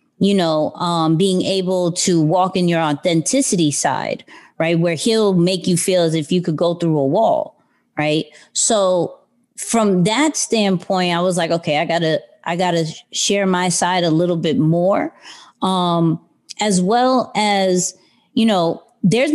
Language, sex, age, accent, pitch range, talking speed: English, female, 30-49, American, 170-215 Hz, 160 wpm